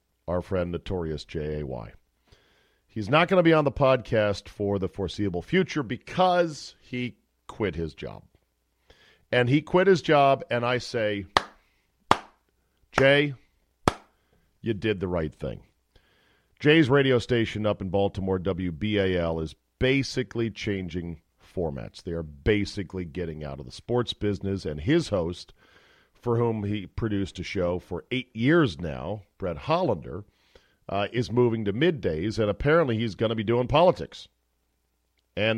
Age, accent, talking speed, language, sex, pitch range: 50-69, American, 140 wpm, English, male, 90-125 Hz